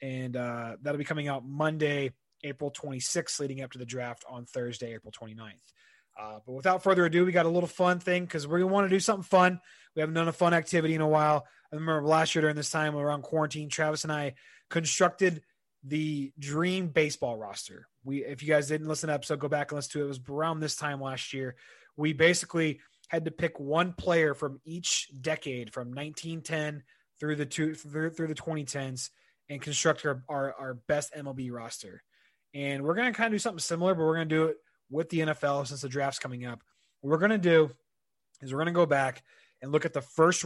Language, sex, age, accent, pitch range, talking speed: English, male, 20-39, American, 140-165 Hz, 220 wpm